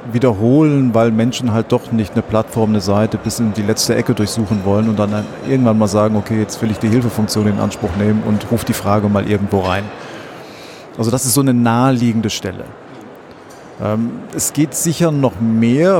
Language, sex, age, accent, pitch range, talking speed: English, male, 40-59, German, 105-120 Hz, 190 wpm